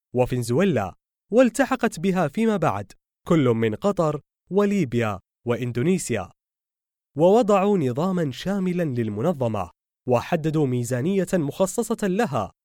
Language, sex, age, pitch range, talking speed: Arabic, male, 20-39, 120-190 Hz, 85 wpm